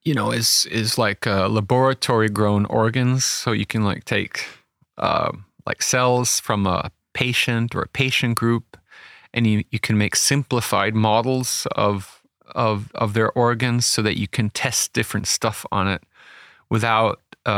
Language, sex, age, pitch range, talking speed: English, male, 30-49, 105-120 Hz, 160 wpm